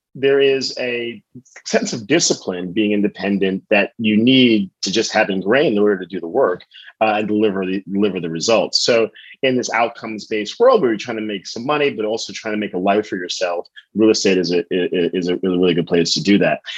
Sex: male